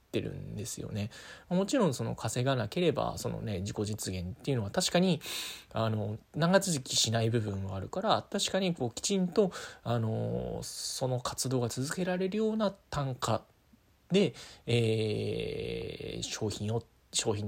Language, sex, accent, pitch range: Japanese, male, native, 100-150 Hz